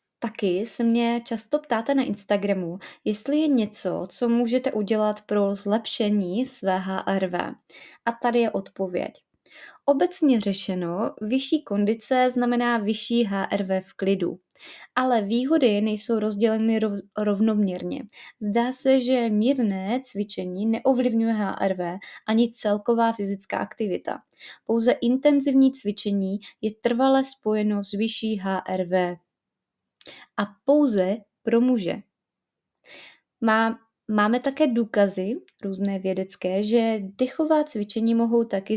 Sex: female